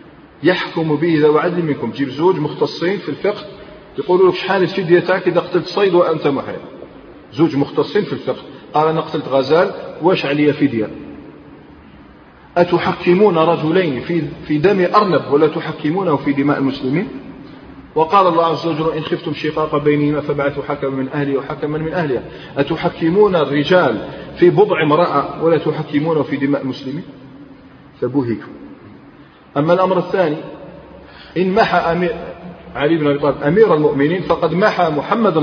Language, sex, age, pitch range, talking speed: Arabic, male, 40-59, 140-175 Hz, 140 wpm